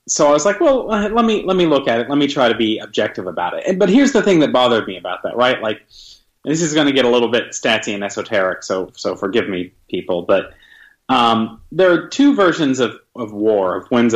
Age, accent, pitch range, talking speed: 30-49, American, 115-165 Hz, 245 wpm